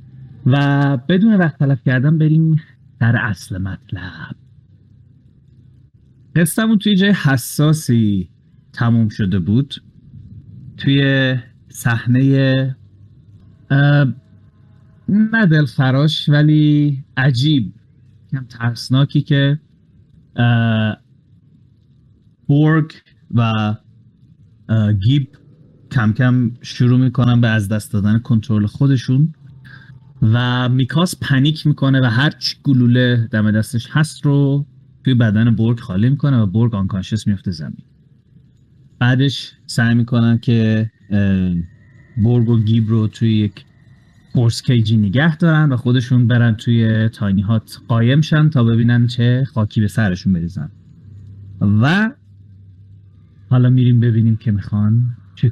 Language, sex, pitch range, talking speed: Persian, male, 110-140 Hz, 105 wpm